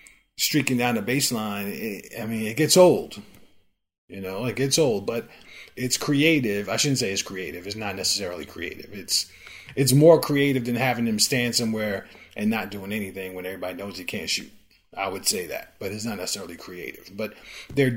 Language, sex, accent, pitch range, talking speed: English, male, American, 100-125 Hz, 190 wpm